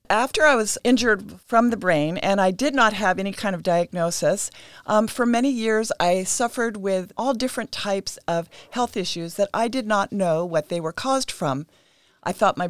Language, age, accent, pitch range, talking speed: English, 50-69, American, 175-220 Hz, 200 wpm